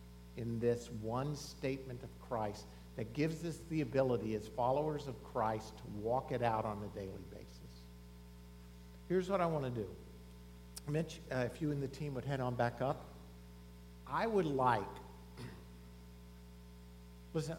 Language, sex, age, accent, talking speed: English, male, 50-69, American, 155 wpm